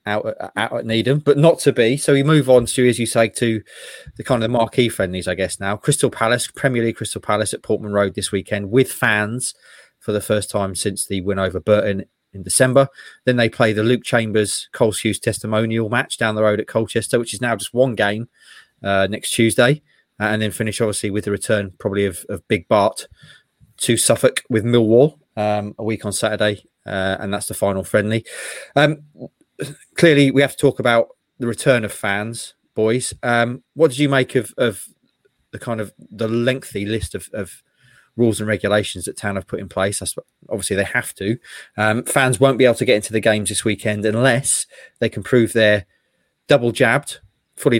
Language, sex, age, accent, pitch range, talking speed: English, male, 30-49, British, 105-120 Hz, 205 wpm